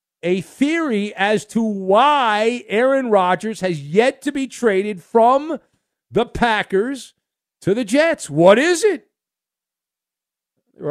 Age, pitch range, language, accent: 50-69, 160-235 Hz, English, American